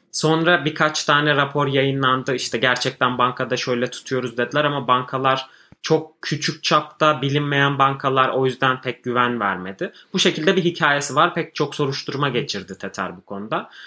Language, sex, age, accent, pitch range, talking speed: Turkish, male, 30-49, native, 120-145 Hz, 150 wpm